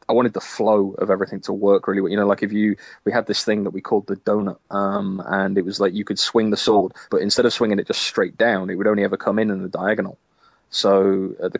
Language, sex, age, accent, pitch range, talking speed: English, male, 20-39, British, 100-105 Hz, 280 wpm